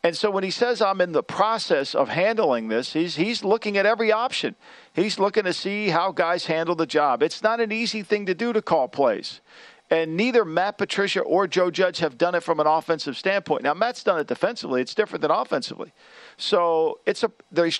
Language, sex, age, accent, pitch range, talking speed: English, male, 50-69, American, 150-200 Hz, 215 wpm